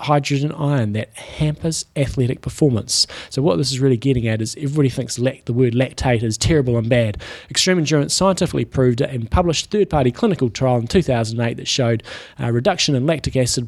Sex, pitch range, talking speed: male, 120-145 Hz, 200 wpm